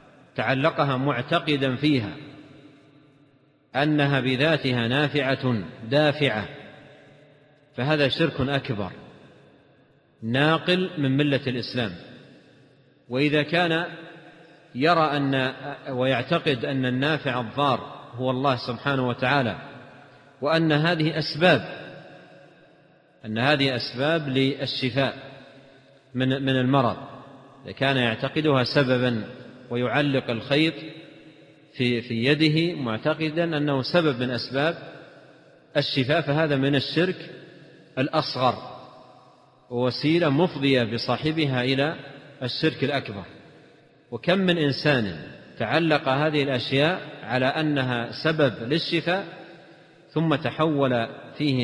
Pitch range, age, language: 125-150 Hz, 40-59, Arabic